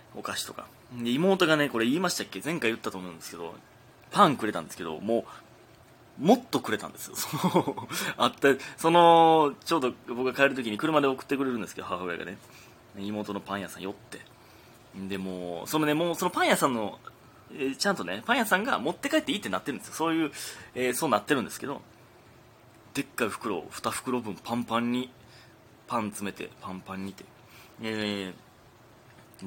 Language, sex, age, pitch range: Japanese, male, 20-39, 100-135 Hz